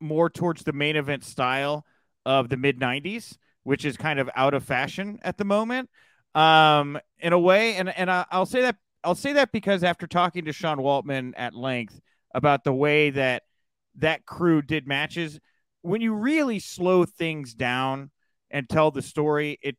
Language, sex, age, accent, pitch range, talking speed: English, male, 30-49, American, 140-190 Hz, 180 wpm